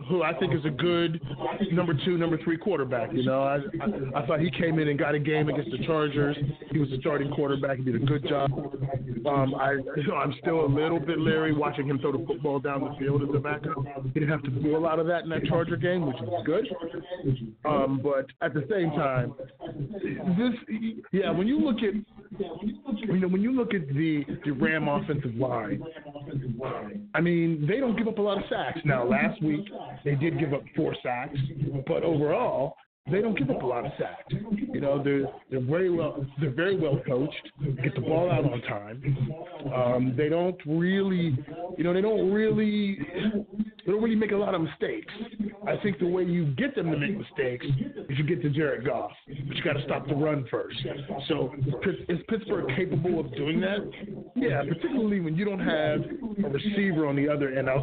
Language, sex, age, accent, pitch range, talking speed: English, male, 40-59, American, 140-180 Hz, 210 wpm